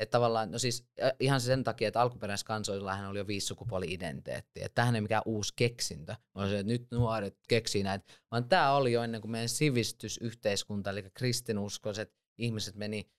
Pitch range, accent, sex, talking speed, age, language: 95-115 Hz, native, male, 175 wpm, 20-39, Finnish